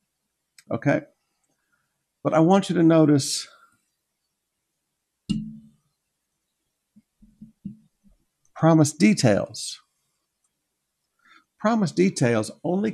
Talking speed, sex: 55 wpm, male